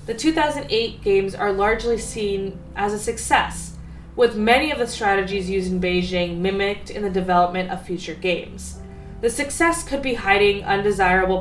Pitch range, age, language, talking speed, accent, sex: 180-235 Hz, 20-39, English, 160 wpm, American, female